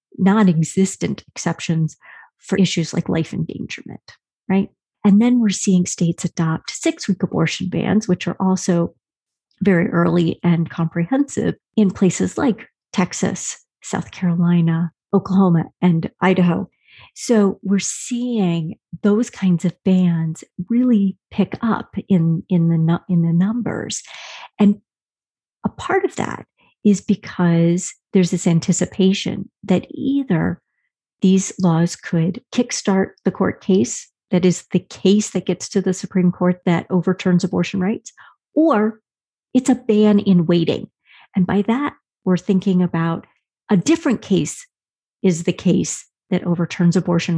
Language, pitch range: English, 175-205 Hz